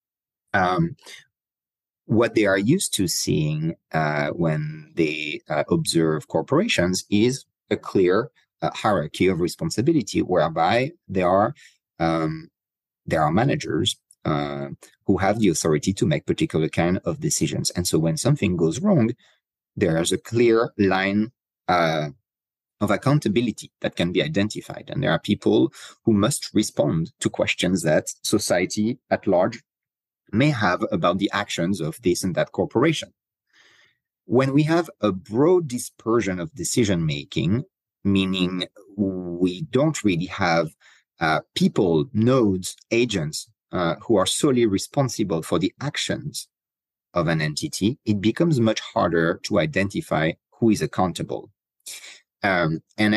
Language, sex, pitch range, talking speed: English, male, 80-115 Hz, 135 wpm